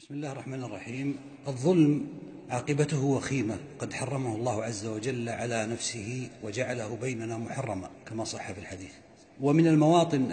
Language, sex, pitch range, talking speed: Arabic, male, 115-145 Hz, 135 wpm